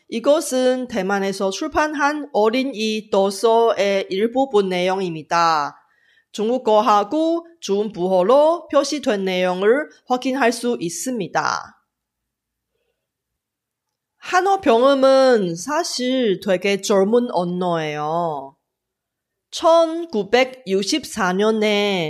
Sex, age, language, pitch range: female, 30-49, Korean, 195-270 Hz